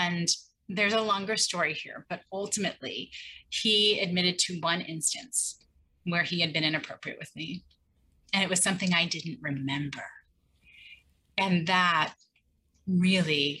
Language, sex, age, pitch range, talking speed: English, female, 30-49, 165-205 Hz, 130 wpm